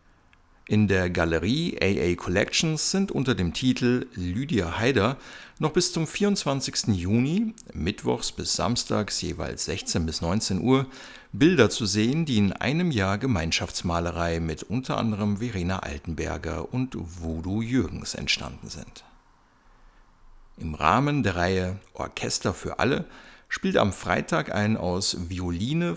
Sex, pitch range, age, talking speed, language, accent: male, 85-125 Hz, 60-79, 125 wpm, German, German